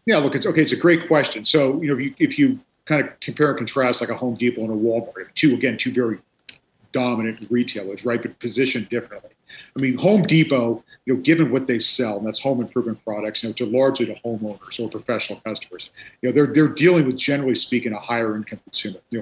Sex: male